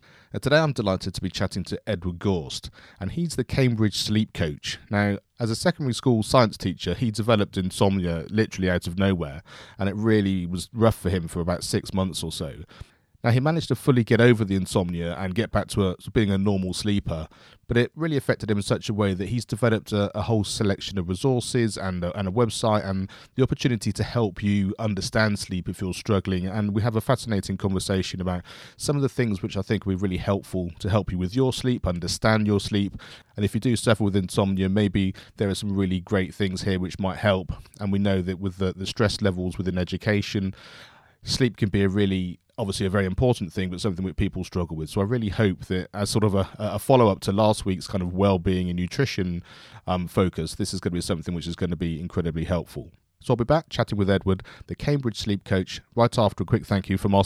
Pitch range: 95-110 Hz